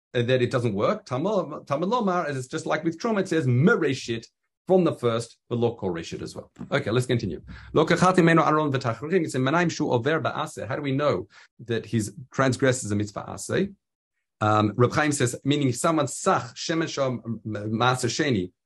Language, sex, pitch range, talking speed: English, male, 115-165 Hz, 185 wpm